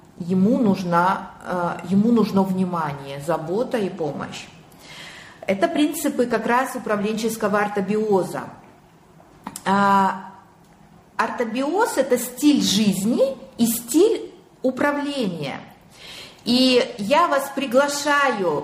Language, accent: Russian, native